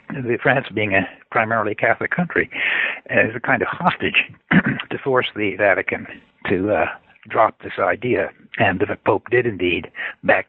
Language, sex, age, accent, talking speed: English, male, 60-79, American, 150 wpm